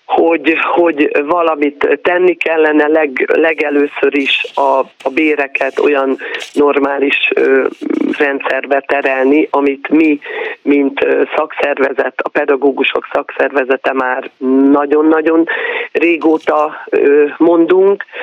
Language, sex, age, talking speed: Hungarian, male, 40-59, 80 wpm